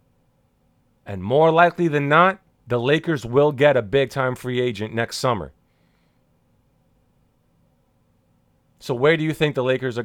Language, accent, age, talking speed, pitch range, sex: Bengali, American, 40-59, 135 wpm, 120-155 Hz, male